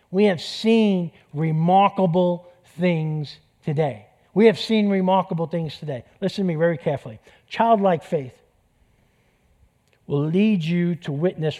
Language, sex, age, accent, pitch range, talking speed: English, male, 50-69, American, 140-185 Hz, 125 wpm